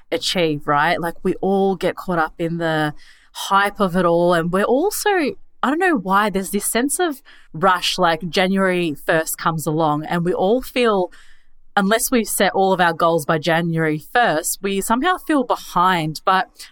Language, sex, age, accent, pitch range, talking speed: English, female, 20-39, Australian, 165-205 Hz, 180 wpm